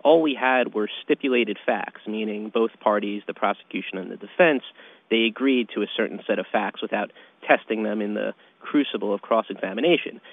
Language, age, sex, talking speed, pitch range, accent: English, 30-49, male, 175 wpm, 105-120 Hz, American